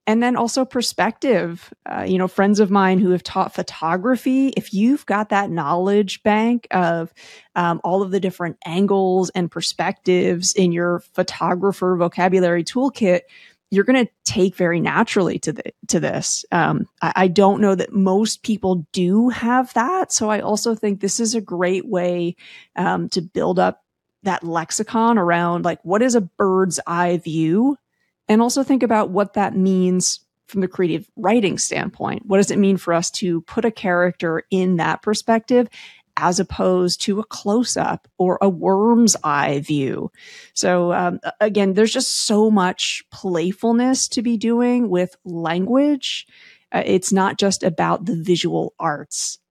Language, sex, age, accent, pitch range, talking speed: English, female, 30-49, American, 180-225 Hz, 160 wpm